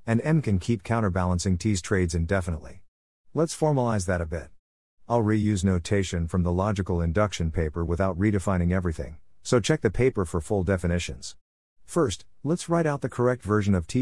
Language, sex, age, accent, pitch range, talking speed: English, male, 50-69, American, 85-120 Hz, 170 wpm